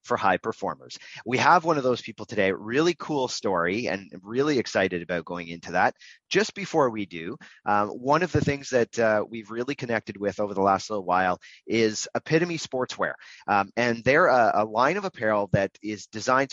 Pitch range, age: 105-130 Hz, 30-49